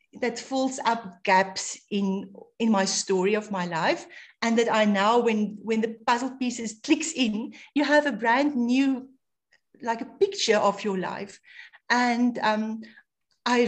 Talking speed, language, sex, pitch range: 160 wpm, English, female, 200-250 Hz